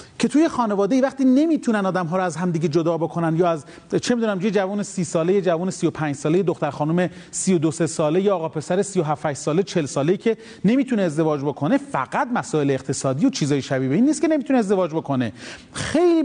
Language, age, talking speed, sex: Persian, 40-59, 190 wpm, male